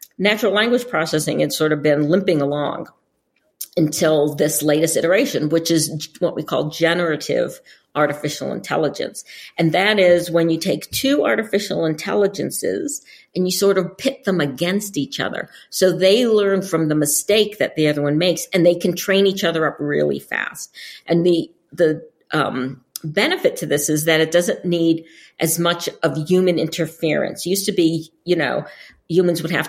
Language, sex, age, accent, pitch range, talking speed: English, female, 50-69, American, 150-190 Hz, 170 wpm